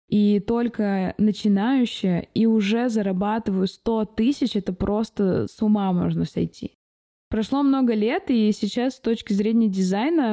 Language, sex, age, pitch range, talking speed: Russian, female, 20-39, 195-225 Hz, 135 wpm